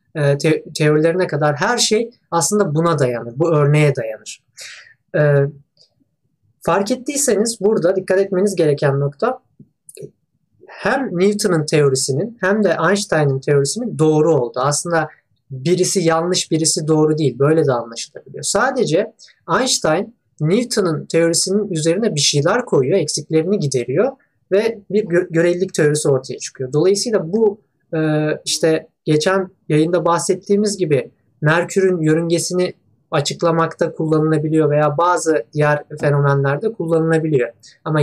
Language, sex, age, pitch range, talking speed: Turkish, male, 30-49, 145-190 Hz, 115 wpm